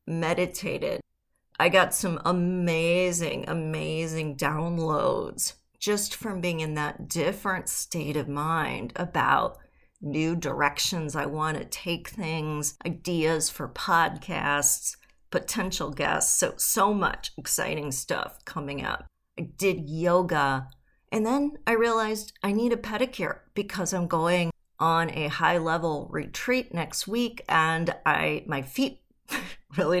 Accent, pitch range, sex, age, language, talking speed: American, 155-210 Hz, female, 40-59, English, 125 wpm